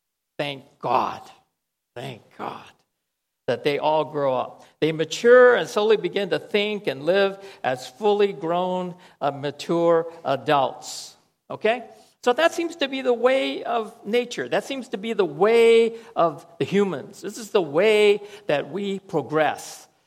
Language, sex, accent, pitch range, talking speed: English, male, American, 170-235 Hz, 150 wpm